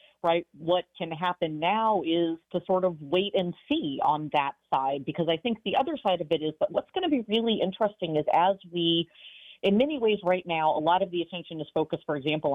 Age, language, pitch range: 40-59, English, 155-205 Hz